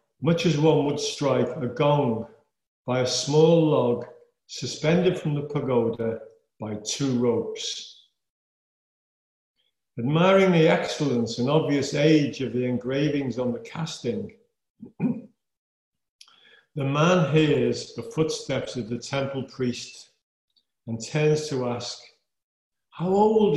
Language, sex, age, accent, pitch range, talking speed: English, male, 50-69, British, 120-160 Hz, 115 wpm